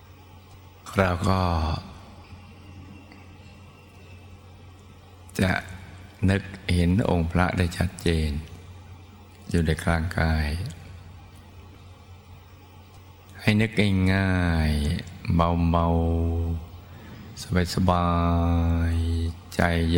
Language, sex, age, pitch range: Thai, male, 60-79, 85-95 Hz